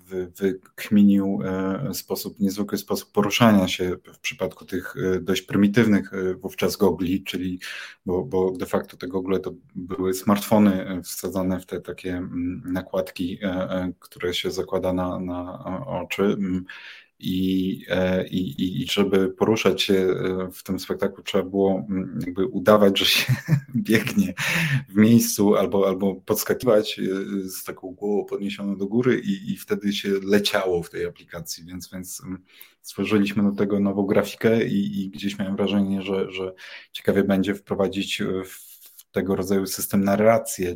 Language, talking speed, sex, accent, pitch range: Polish, 135 wpm, male, native, 90-100 Hz